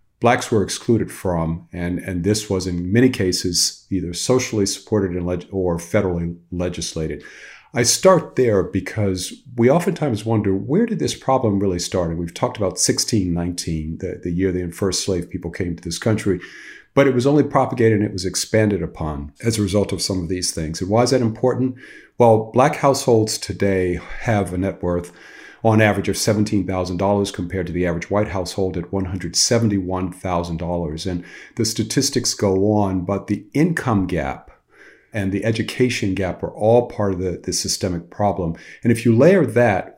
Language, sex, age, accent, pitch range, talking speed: English, male, 50-69, American, 90-110 Hz, 170 wpm